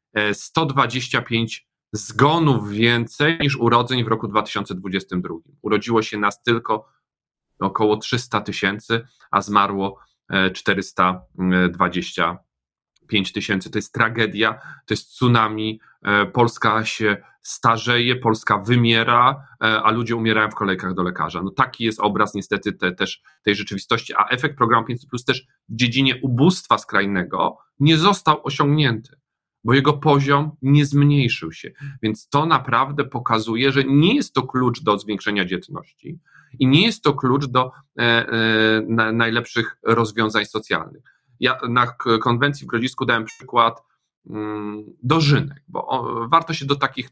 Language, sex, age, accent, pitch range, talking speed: Polish, male, 40-59, native, 105-130 Hz, 125 wpm